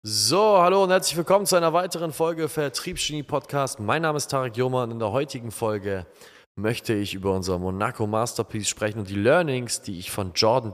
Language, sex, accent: German, male, German